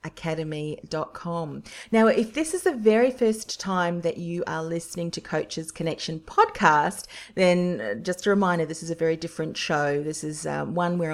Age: 40-59